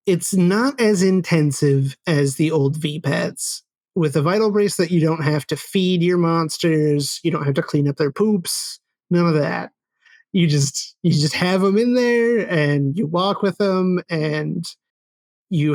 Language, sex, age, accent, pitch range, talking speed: English, male, 30-49, American, 150-180 Hz, 180 wpm